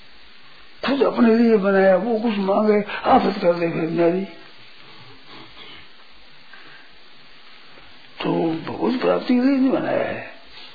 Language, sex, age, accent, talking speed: Hindi, male, 50-69, native, 100 wpm